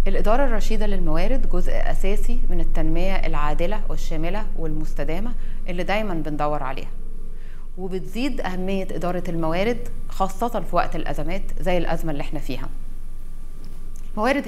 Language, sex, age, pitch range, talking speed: Arabic, female, 30-49, 165-215 Hz, 115 wpm